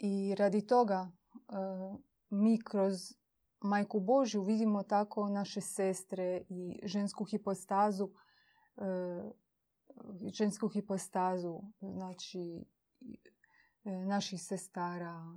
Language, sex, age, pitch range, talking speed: Croatian, female, 30-49, 185-215 Hz, 80 wpm